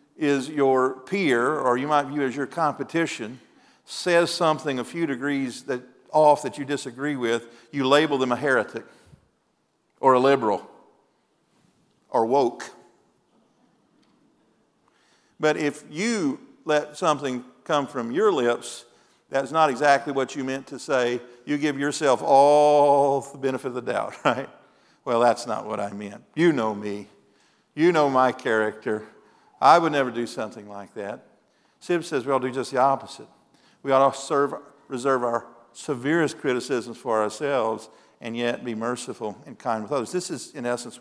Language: English